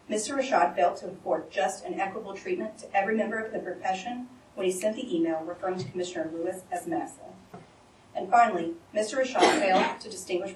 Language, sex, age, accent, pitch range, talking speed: English, female, 40-59, American, 175-245 Hz, 190 wpm